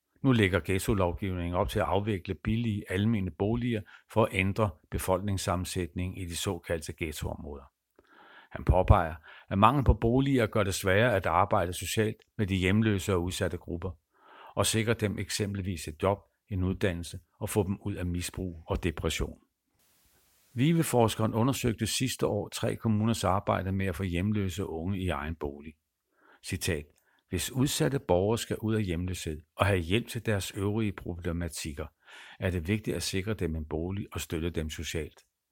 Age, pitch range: 60-79, 85-110 Hz